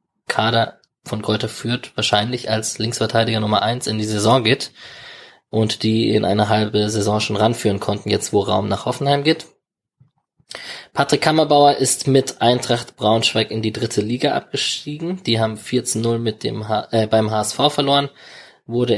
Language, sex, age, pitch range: German, male, 20-39, 105-125 Hz